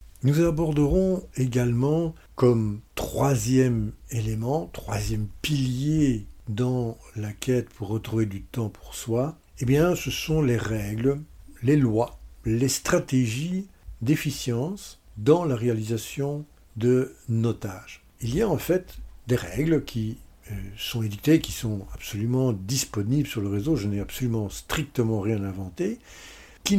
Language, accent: French, French